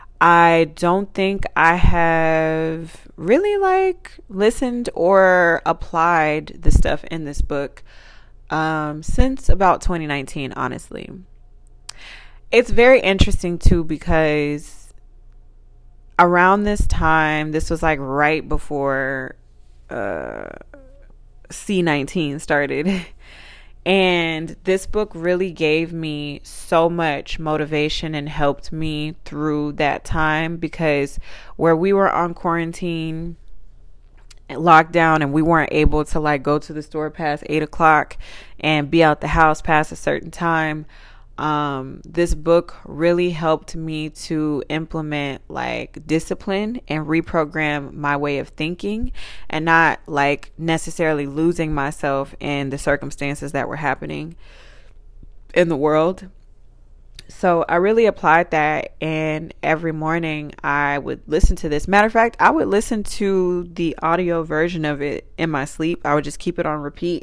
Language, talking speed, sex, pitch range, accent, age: English, 130 wpm, female, 145-170 Hz, American, 20-39